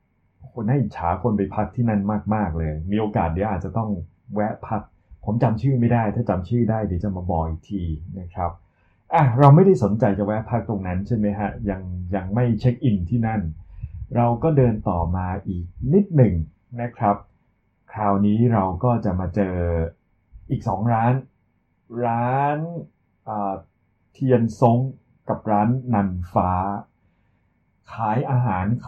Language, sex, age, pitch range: Thai, male, 20-39, 95-125 Hz